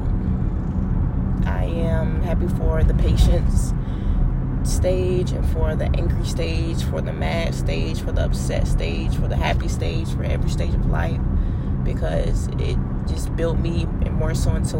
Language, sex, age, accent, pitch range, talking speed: English, female, 20-39, American, 70-85 Hz, 155 wpm